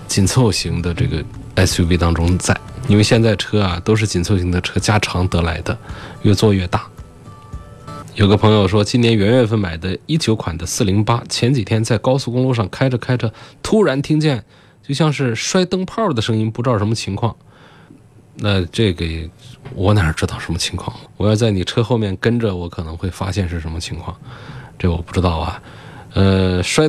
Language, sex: Chinese, male